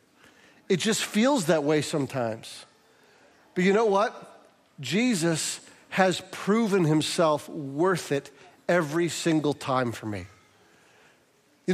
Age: 40-59